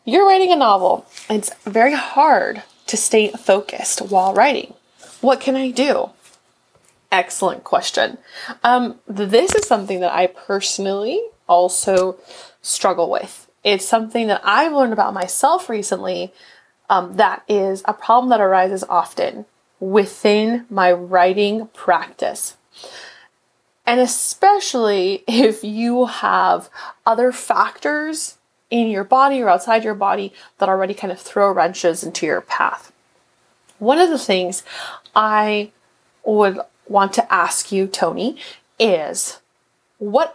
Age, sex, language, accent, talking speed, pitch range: 20-39, female, English, American, 125 wpm, 195-265 Hz